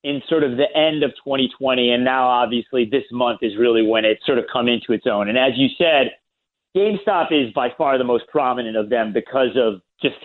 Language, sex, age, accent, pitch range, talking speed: English, male, 30-49, American, 125-165 Hz, 220 wpm